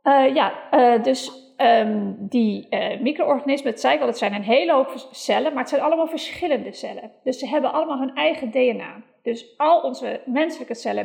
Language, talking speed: Dutch, 195 wpm